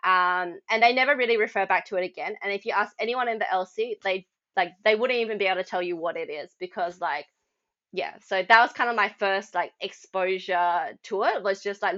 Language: English